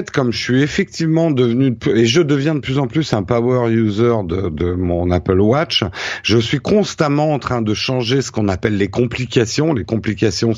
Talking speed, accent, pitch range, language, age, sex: 195 wpm, French, 100-130 Hz, French, 50-69, male